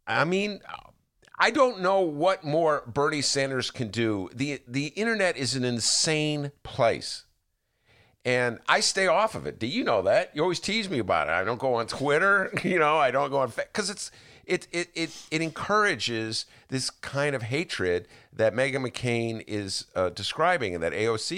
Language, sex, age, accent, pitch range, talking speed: English, male, 50-69, American, 105-155 Hz, 180 wpm